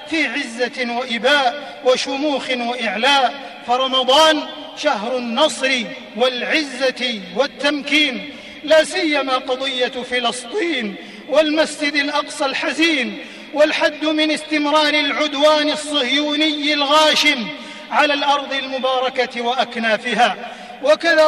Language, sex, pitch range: Arabic, male, 270-310 Hz